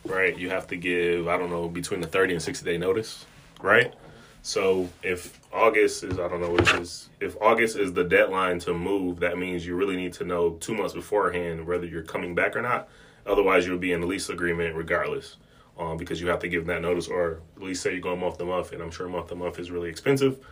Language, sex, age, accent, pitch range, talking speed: English, male, 20-39, American, 85-95 Hz, 245 wpm